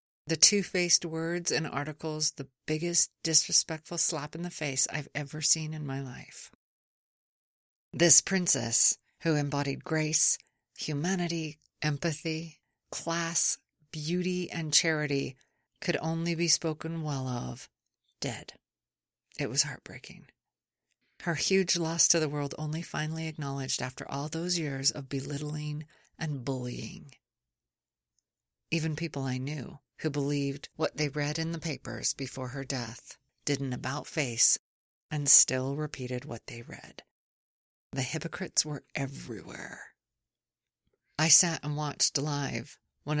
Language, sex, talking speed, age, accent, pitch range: English, female, 125 wpm, 50-69, American, 135-160 Hz